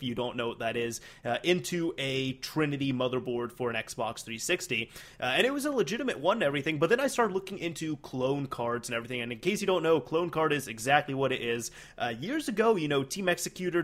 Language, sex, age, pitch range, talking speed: English, male, 20-39, 125-165 Hz, 240 wpm